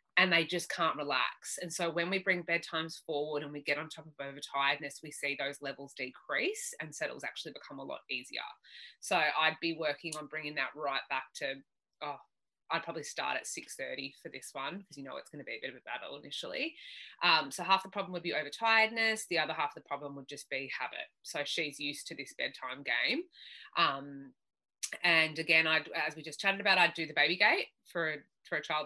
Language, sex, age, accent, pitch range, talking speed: English, female, 20-39, Australian, 140-170 Hz, 220 wpm